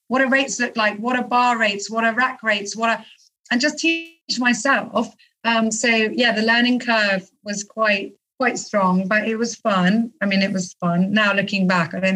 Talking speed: 210 wpm